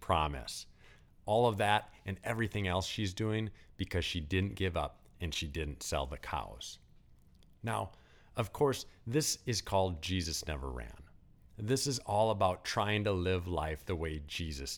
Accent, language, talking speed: American, English, 160 wpm